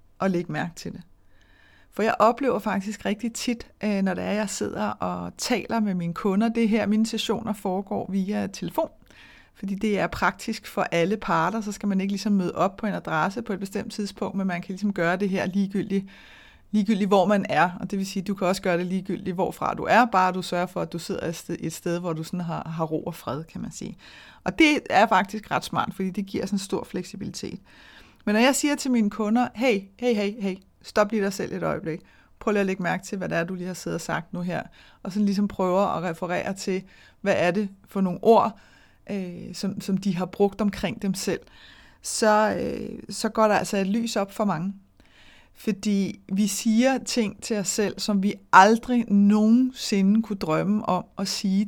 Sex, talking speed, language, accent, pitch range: female, 220 wpm, Danish, native, 185-215 Hz